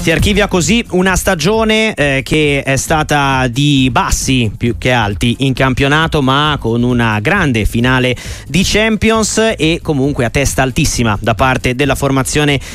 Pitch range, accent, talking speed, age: 115-165 Hz, native, 150 wpm, 30-49